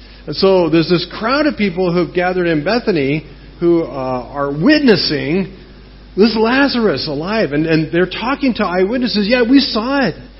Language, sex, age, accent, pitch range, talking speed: English, male, 40-59, American, 140-200 Hz, 165 wpm